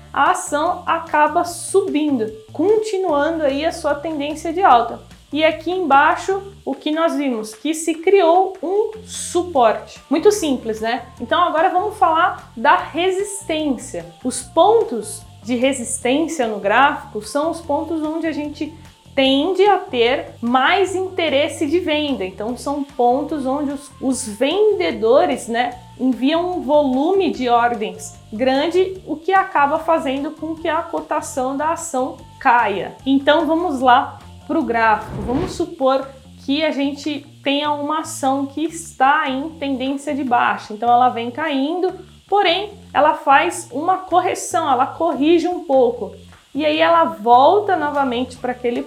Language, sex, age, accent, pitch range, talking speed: Portuguese, female, 20-39, Brazilian, 260-340 Hz, 140 wpm